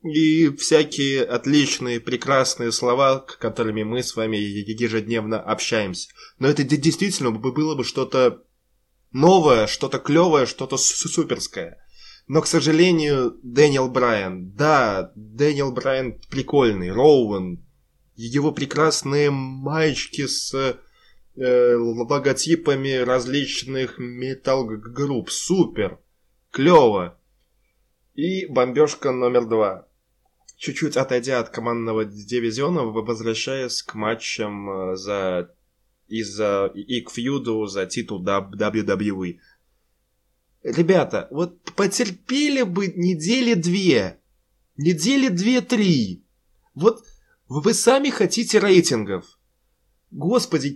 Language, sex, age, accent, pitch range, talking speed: Russian, male, 20-39, native, 115-165 Hz, 90 wpm